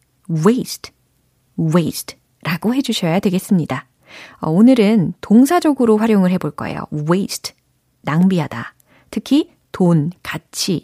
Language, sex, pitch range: Korean, female, 170-245 Hz